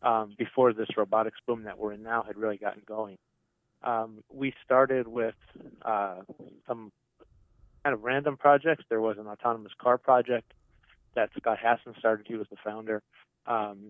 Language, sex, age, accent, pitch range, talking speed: English, male, 30-49, American, 110-125 Hz, 165 wpm